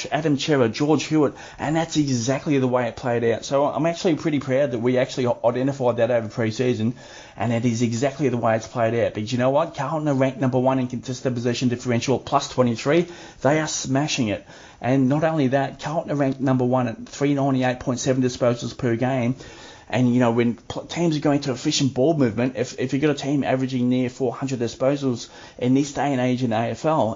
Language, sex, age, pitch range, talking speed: English, male, 30-49, 120-140 Hz, 215 wpm